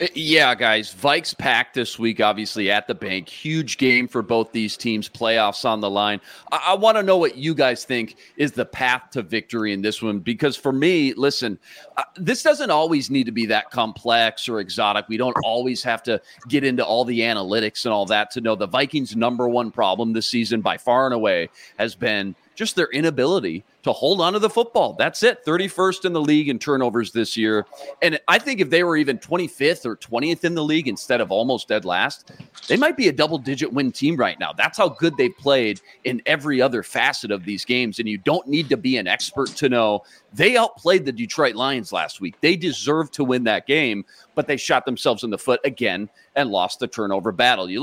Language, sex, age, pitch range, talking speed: English, male, 40-59, 115-155 Hz, 220 wpm